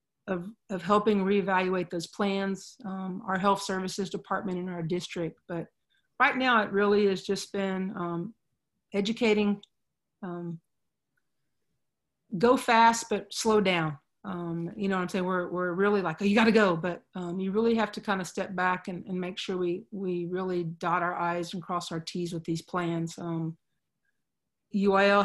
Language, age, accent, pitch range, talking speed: English, 40-59, American, 180-205 Hz, 175 wpm